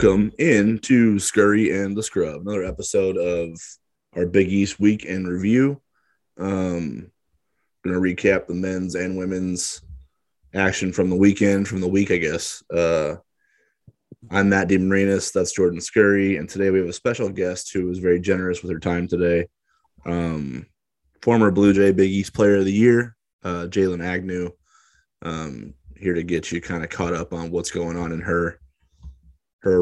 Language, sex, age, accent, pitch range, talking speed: English, male, 20-39, American, 85-100 Hz, 165 wpm